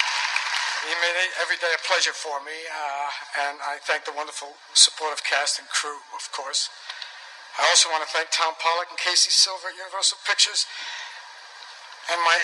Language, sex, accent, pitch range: Chinese, male, American, 150-185 Hz